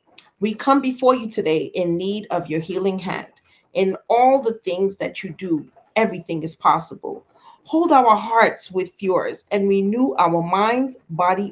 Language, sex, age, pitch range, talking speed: English, female, 40-59, 180-255 Hz, 160 wpm